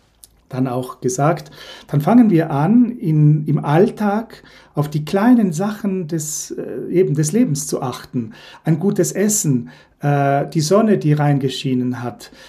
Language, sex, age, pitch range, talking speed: German, male, 40-59, 145-190 Hz, 145 wpm